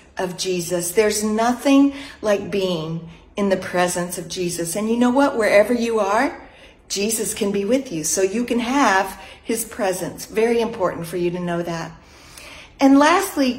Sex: female